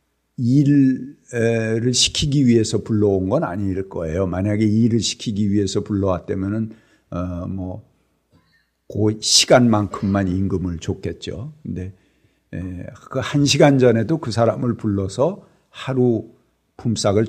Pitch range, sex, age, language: 95-130 Hz, male, 50-69, Korean